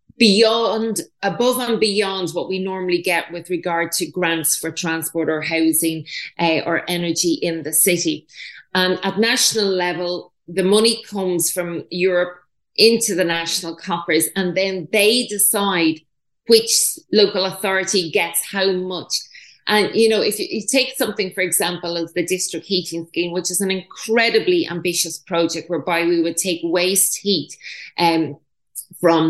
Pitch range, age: 165-200 Hz, 30-49